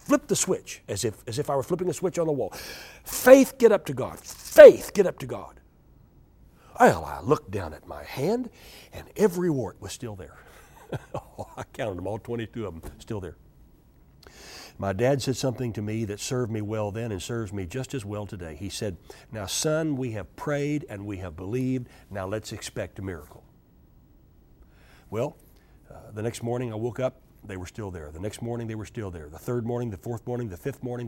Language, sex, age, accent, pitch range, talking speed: English, male, 60-79, American, 100-135 Hz, 210 wpm